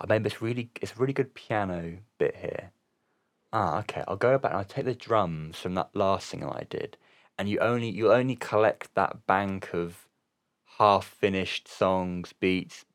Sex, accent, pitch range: male, British, 90-110 Hz